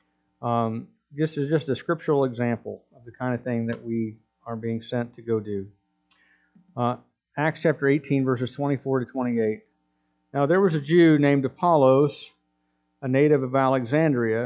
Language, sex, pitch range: English, male, 105-145 Hz